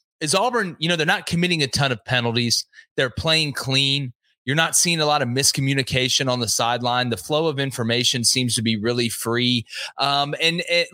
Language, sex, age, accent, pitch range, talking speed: English, male, 30-49, American, 115-145 Hz, 195 wpm